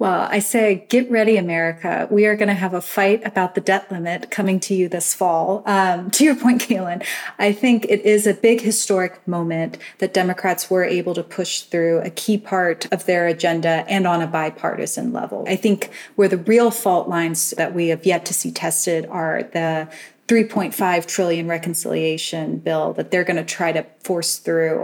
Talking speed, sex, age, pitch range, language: 195 wpm, female, 30-49, 170-205 Hz, English